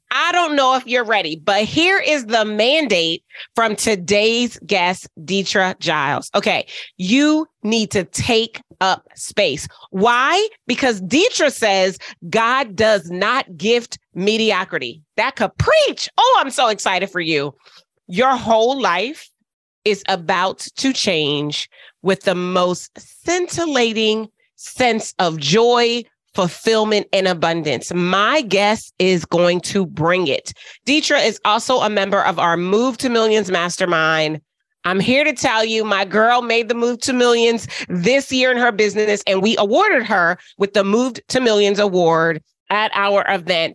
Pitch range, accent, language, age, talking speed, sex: 180-240 Hz, American, English, 30-49, 145 wpm, female